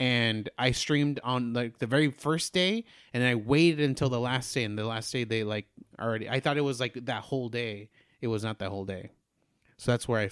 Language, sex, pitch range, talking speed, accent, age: English, male, 110-130 Hz, 240 wpm, American, 30-49